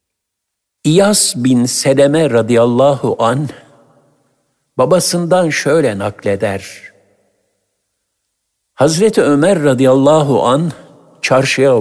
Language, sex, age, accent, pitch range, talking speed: Turkish, male, 60-79, native, 115-155 Hz, 65 wpm